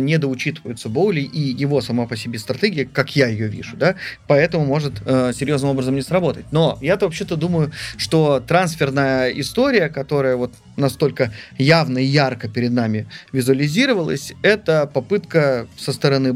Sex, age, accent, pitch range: male, 30-49, native, 125-165 Hz